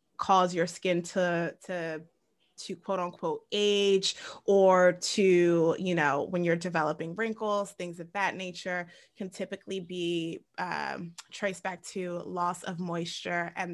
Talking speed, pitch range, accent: 140 wpm, 175-200 Hz, American